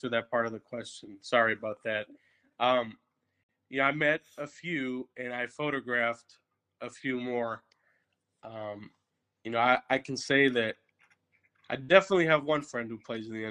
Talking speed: 170 wpm